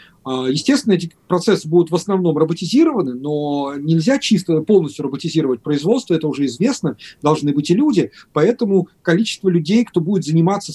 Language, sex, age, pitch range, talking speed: Russian, male, 30-49, 155-195 Hz, 145 wpm